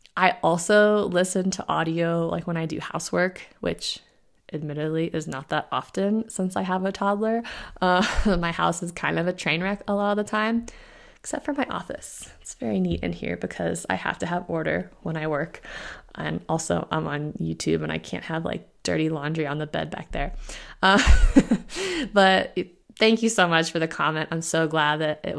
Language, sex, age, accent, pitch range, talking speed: English, female, 20-39, American, 160-200 Hz, 200 wpm